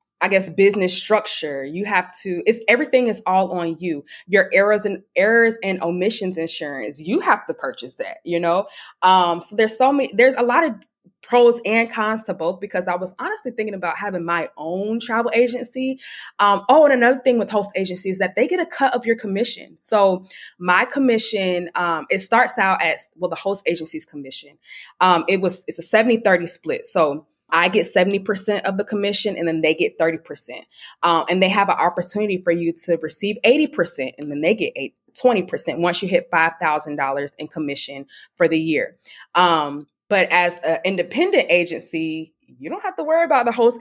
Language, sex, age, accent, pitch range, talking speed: English, female, 20-39, American, 170-225 Hz, 195 wpm